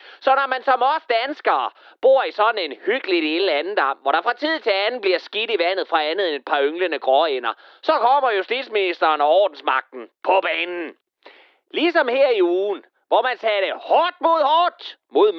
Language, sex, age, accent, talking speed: Danish, male, 30-49, native, 185 wpm